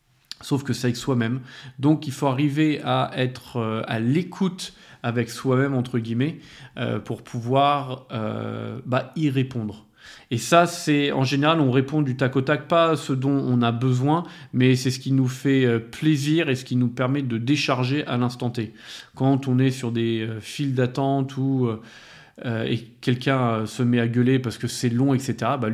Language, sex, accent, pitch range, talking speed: French, male, French, 120-140 Hz, 185 wpm